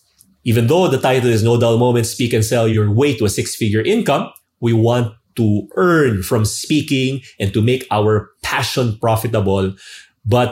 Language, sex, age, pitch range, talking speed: English, male, 30-49, 100-120 Hz, 170 wpm